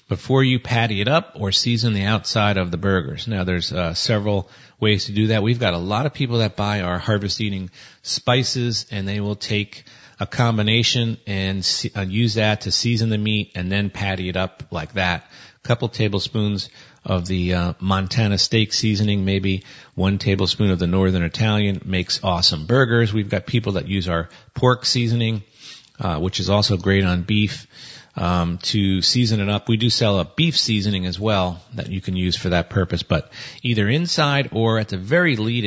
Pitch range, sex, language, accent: 95-120 Hz, male, English, American